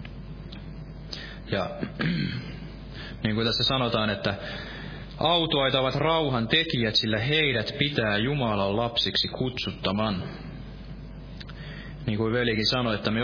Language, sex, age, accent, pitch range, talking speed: Finnish, male, 20-39, native, 110-145 Hz, 95 wpm